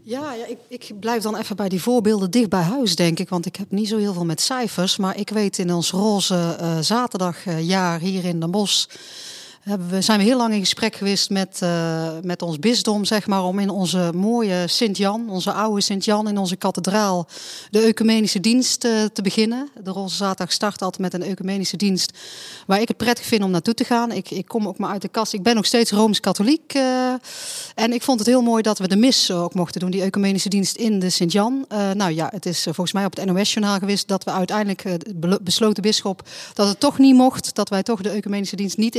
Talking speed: 230 wpm